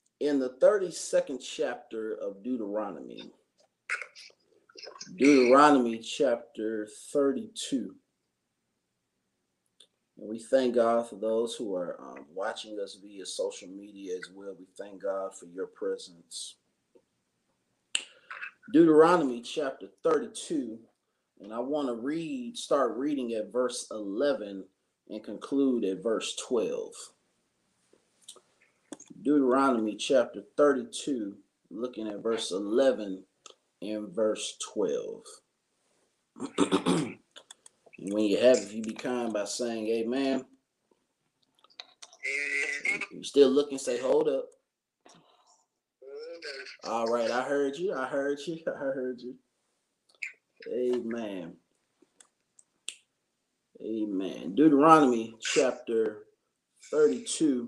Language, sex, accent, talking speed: English, male, American, 95 wpm